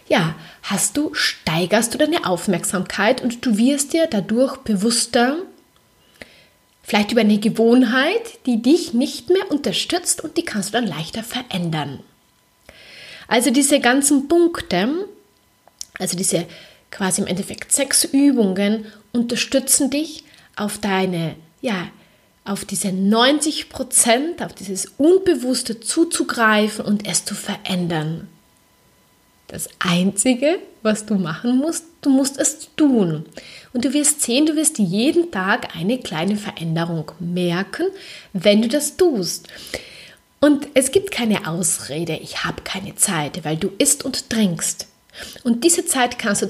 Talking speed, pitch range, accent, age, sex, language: 130 wpm, 190-275 Hz, German, 30-49, female, German